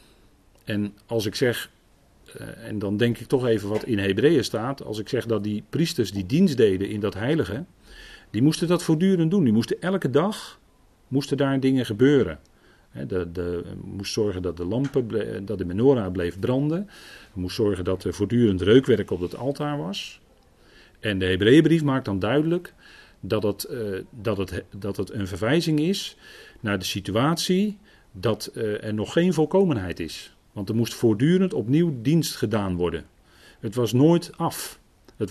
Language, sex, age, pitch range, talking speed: Dutch, male, 40-59, 105-155 Hz, 175 wpm